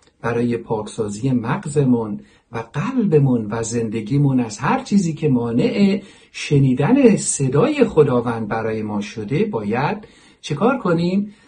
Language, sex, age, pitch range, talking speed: Persian, male, 50-69, 125-210 Hz, 110 wpm